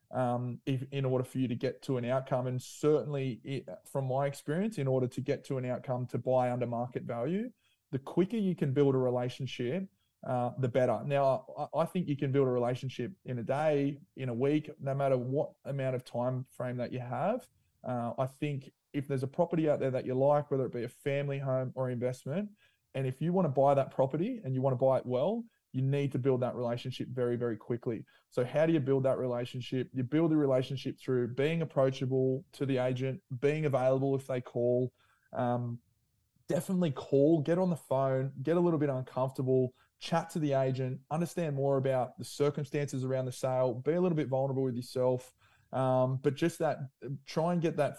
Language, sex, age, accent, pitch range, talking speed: English, male, 20-39, Australian, 125-145 Hz, 210 wpm